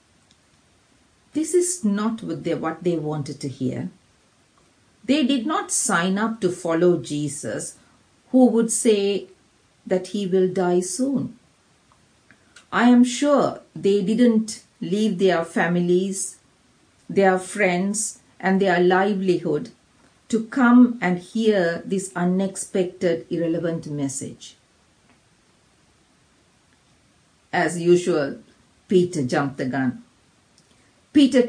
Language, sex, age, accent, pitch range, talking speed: English, female, 50-69, Indian, 175-240 Hz, 100 wpm